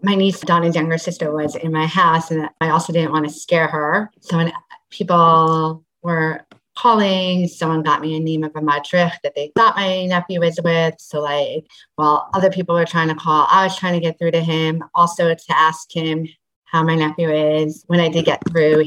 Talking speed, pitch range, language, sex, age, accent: 215 wpm, 155-170 Hz, English, female, 30-49, American